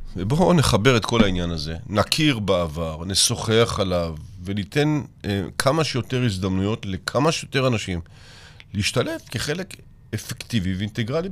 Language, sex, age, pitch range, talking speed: Hebrew, male, 50-69, 100-140 Hz, 115 wpm